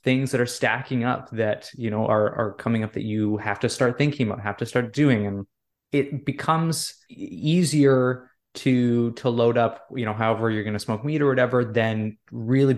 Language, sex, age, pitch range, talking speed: English, male, 20-39, 110-130 Hz, 200 wpm